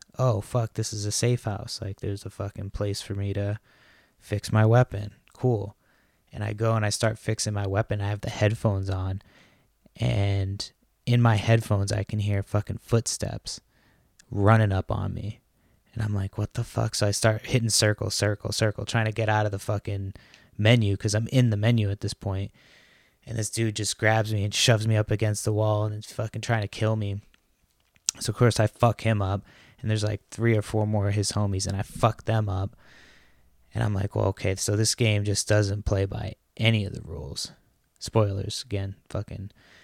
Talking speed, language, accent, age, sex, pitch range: 205 wpm, English, American, 20-39, male, 100-115 Hz